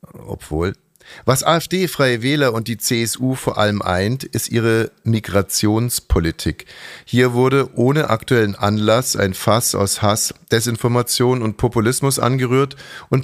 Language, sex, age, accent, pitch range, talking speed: German, male, 50-69, German, 100-125 Hz, 125 wpm